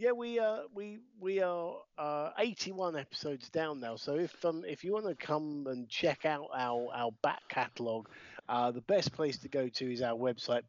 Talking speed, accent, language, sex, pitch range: 210 wpm, British, English, male, 120-165 Hz